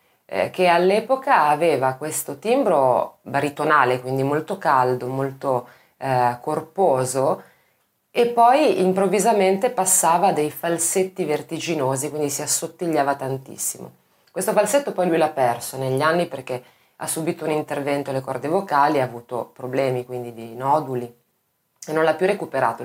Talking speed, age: 130 wpm, 20-39